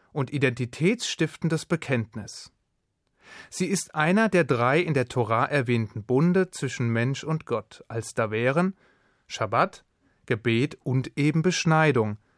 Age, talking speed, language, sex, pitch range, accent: 30-49, 120 wpm, German, male, 120-160 Hz, German